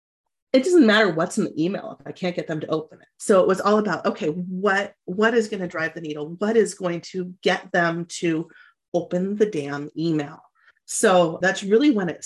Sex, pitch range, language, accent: female, 165-215 Hz, English, American